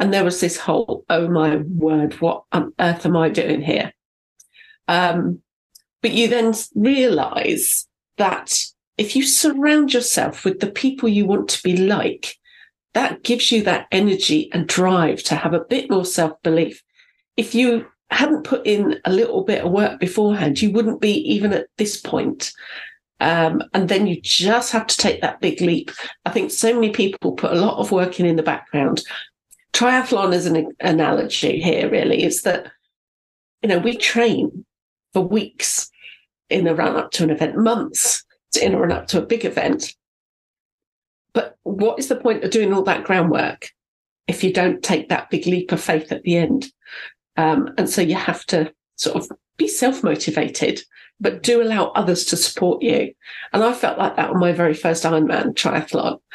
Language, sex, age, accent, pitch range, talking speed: English, female, 40-59, British, 170-235 Hz, 180 wpm